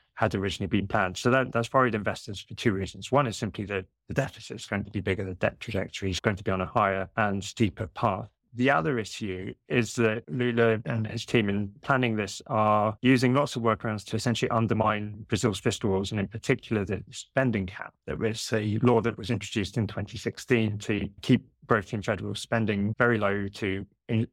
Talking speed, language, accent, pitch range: 205 wpm, English, British, 100-120 Hz